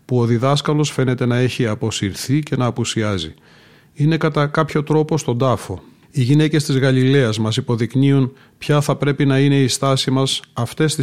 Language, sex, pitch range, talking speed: Greek, male, 120-145 Hz, 175 wpm